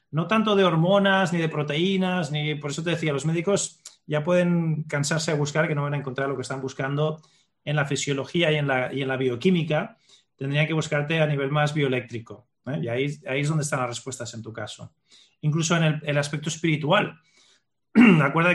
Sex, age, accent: male, 30-49, Spanish